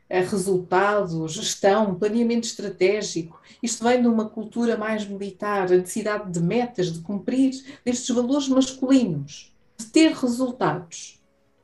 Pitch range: 165-220 Hz